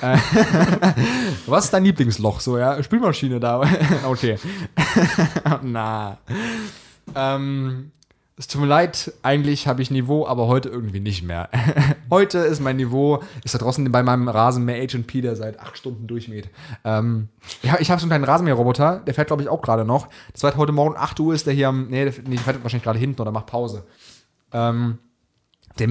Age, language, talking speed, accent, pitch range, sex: 20-39, German, 180 wpm, German, 110-145 Hz, male